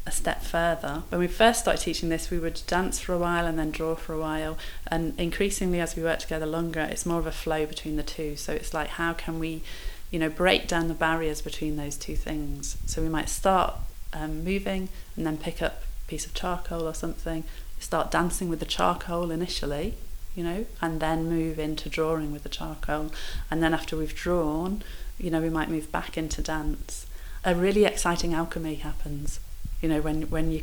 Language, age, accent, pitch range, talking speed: English, 30-49, British, 155-170 Hz, 210 wpm